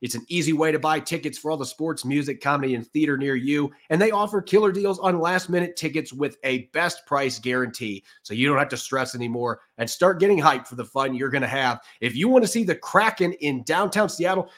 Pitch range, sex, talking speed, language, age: 130-175 Hz, male, 235 wpm, English, 30-49